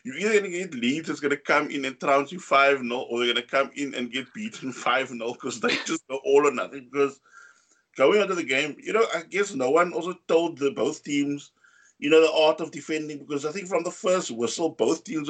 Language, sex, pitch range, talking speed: English, male, 130-165 Hz, 245 wpm